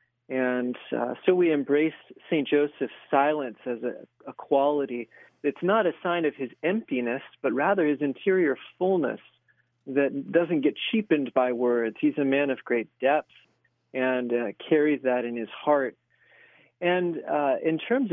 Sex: male